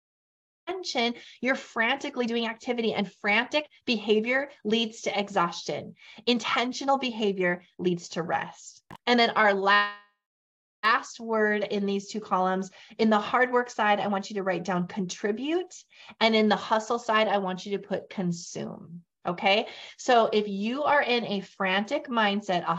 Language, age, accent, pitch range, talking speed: English, 30-49, American, 195-235 Hz, 155 wpm